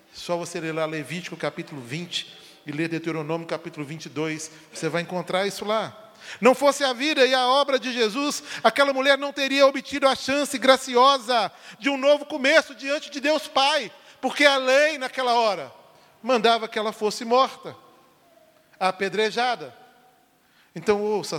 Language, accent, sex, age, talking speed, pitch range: Portuguese, Brazilian, male, 40-59, 150 wpm, 155-255 Hz